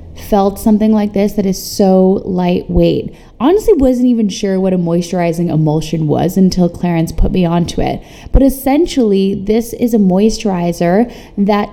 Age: 20-39